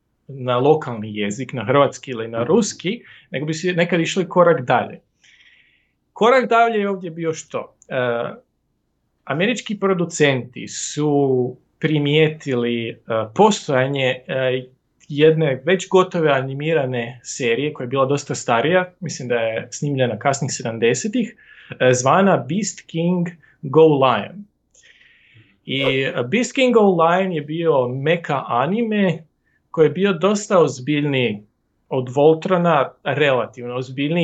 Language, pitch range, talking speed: Croatian, 125-180 Hz, 115 wpm